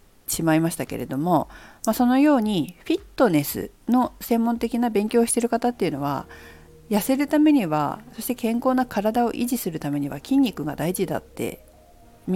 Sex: female